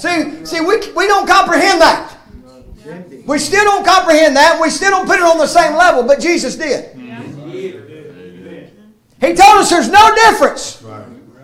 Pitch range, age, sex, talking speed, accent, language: 300-370 Hz, 50-69, male, 155 wpm, American, English